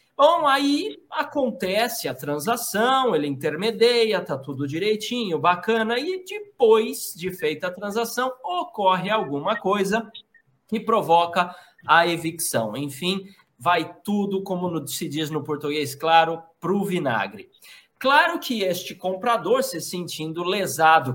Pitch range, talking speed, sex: 160-245 Hz, 125 wpm, male